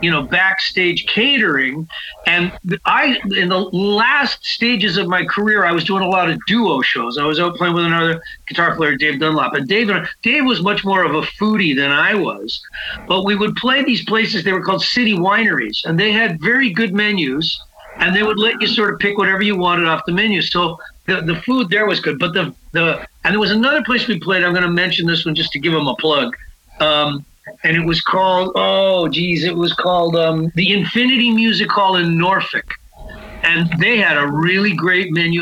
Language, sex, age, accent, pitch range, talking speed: English, male, 40-59, American, 165-210 Hz, 220 wpm